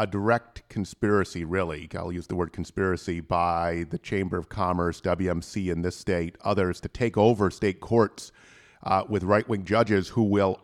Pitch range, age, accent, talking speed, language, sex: 95-110 Hz, 40-59, American, 170 wpm, English, male